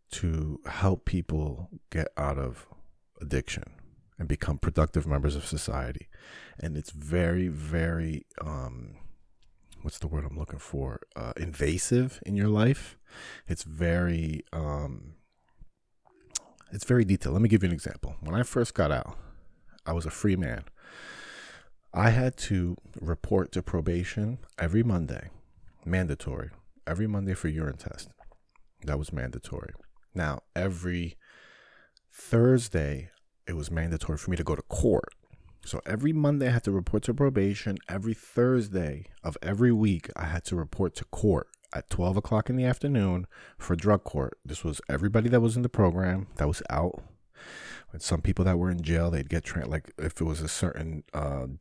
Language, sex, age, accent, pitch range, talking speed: English, male, 40-59, American, 80-100 Hz, 160 wpm